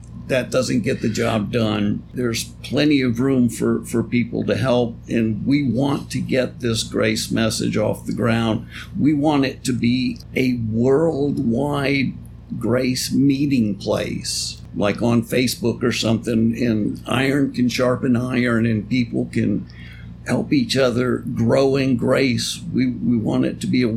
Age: 50-69